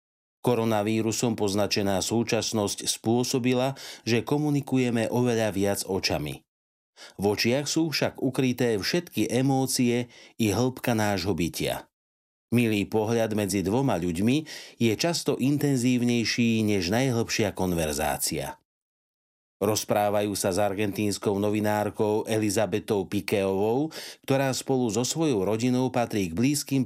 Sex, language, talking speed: male, Slovak, 105 wpm